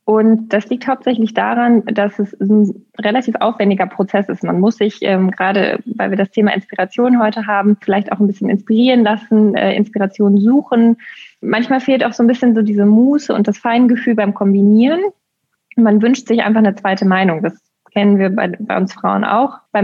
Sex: female